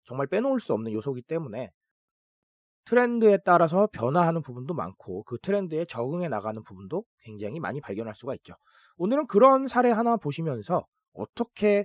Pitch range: 130-205 Hz